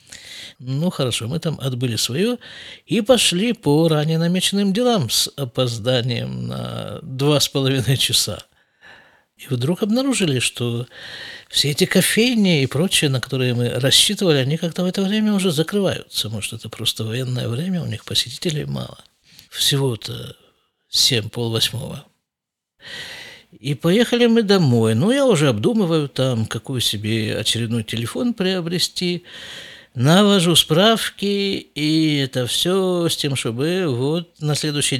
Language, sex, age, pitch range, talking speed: Russian, male, 50-69, 130-190 Hz, 130 wpm